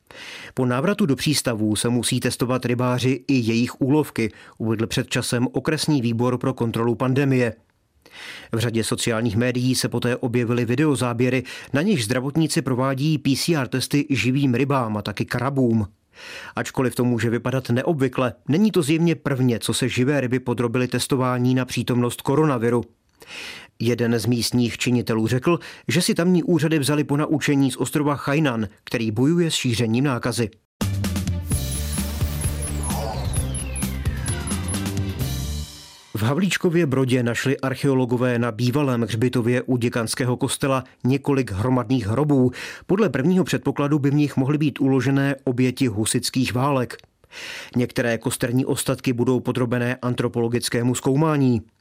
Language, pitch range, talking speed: Czech, 115-135 Hz, 125 wpm